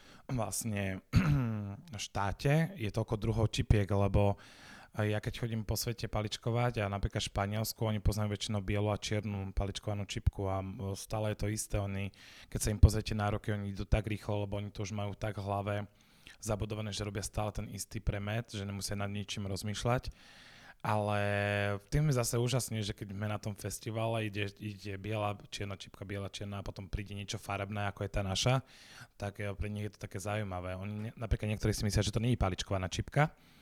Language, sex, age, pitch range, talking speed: Slovak, male, 20-39, 100-110 Hz, 185 wpm